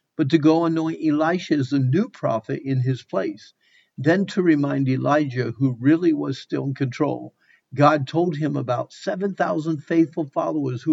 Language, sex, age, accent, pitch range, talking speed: English, male, 50-69, American, 135-165 Hz, 165 wpm